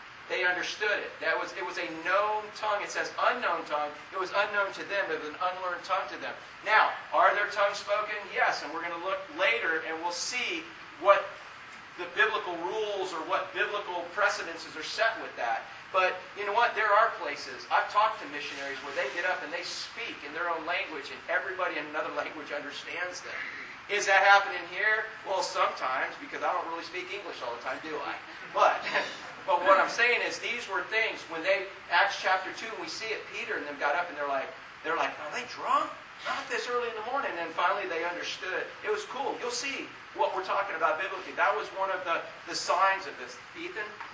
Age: 40-59